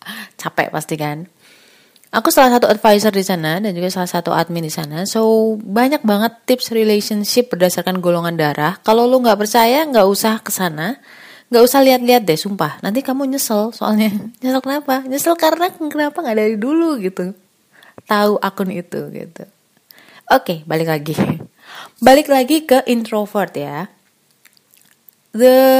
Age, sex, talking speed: 20-39, female, 145 wpm